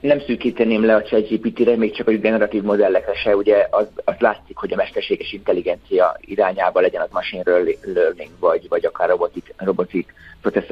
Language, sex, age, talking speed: Hungarian, male, 30-49, 170 wpm